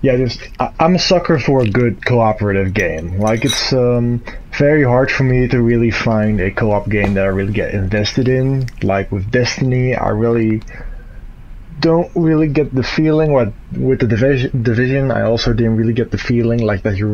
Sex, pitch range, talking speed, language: male, 110-140 Hz, 195 wpm, English